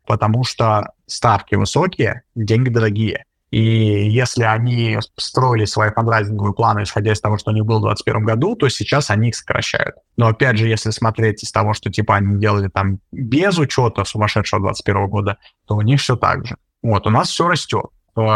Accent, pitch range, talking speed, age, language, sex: native, 105-120 Hz, 185 wpm, 30-49, Russian, male